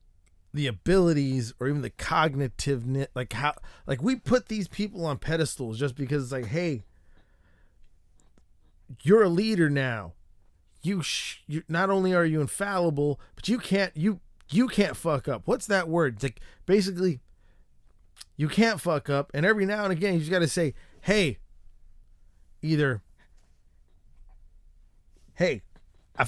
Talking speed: 145 wpm